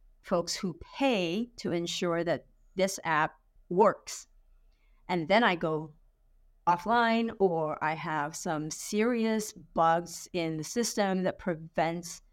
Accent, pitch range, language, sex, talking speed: American, 160-210 Hz, English, female, 120 wpm